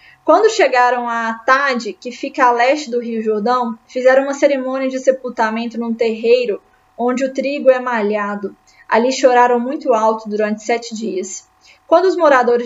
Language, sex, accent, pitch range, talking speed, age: Portuguese, female, Brazilian, 225-280 Hz, 155 wpm, 20-39